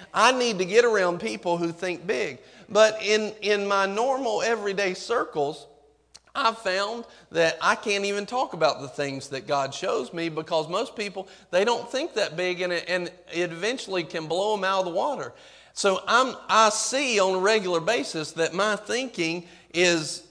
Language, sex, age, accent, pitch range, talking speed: English, male, 40-59, American, 180-255 Hz, 175 wpm